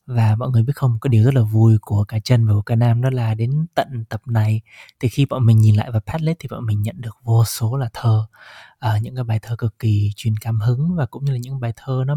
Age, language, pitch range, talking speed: 20-39, Vietnamese, 110-130 Hz, 280 wpm